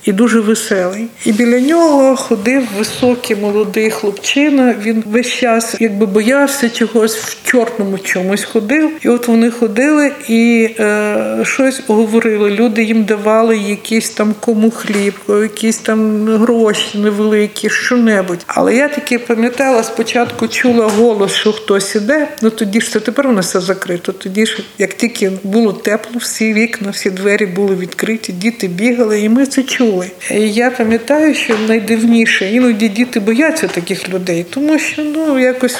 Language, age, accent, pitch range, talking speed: Ukrainian, 50-69, native, 210-245 Hz, 150 wpm